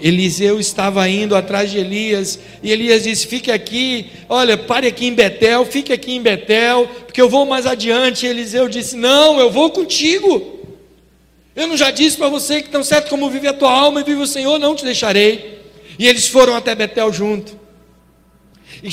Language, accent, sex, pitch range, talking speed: Portuguese, Brazilian, male, 220-280 Hz, 185 wpm